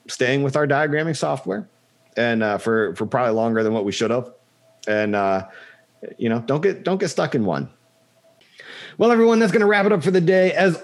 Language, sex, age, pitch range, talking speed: English, male, 30-49, 130-195 Hz, 215 wpm